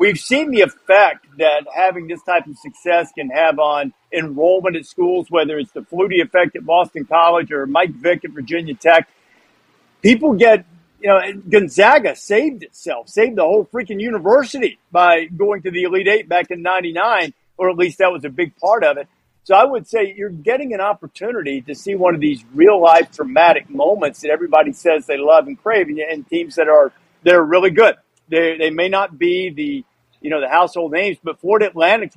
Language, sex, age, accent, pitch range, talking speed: English, male, 50-69, American, 160-200 Hz, 200 wpm